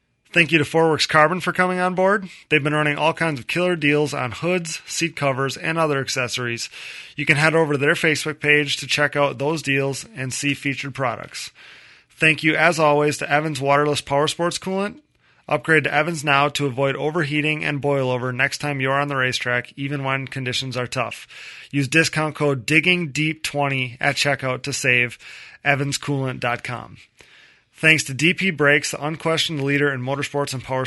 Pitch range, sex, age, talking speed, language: 135-155 Hz, male, 30-49, 180 wpm, English